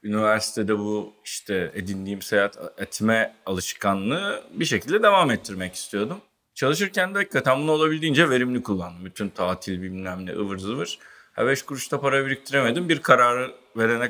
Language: Turkish